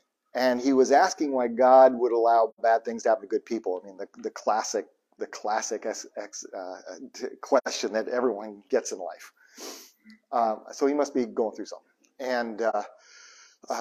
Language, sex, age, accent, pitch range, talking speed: English, male, 40-59, American, 115-145 Hz, 180 wpm